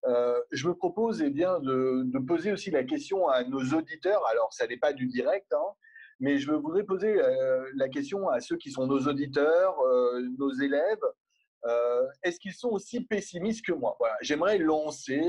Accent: French